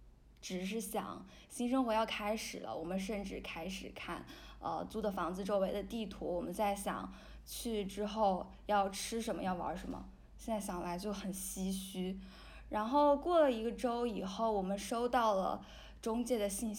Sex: female